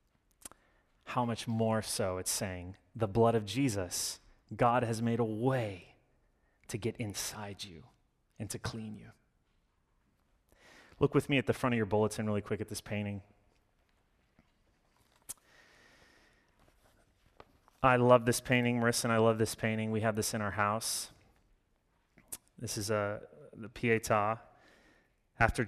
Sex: male